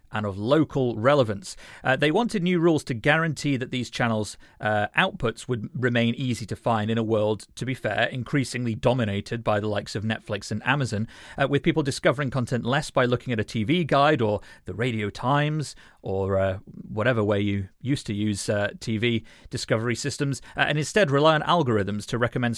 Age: 30-49